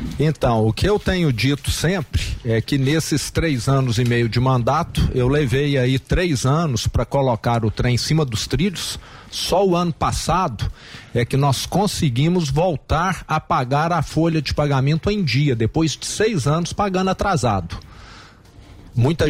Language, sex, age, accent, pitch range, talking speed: English, male, 50-69, Brazilian, 130-170 Hz, 165 wpm